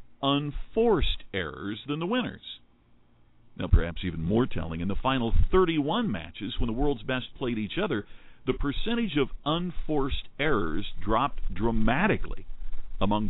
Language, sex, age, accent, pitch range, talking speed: English, male, 50-69, American, 95-140 Hz, 135 wpm